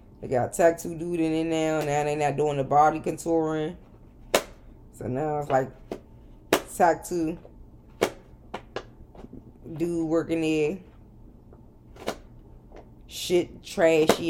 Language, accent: English, American